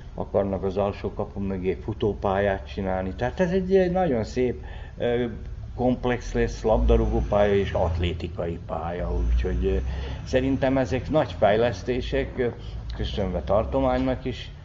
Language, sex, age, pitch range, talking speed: Hungarian, male, 60-79, 90-115 Hz, 110 wpm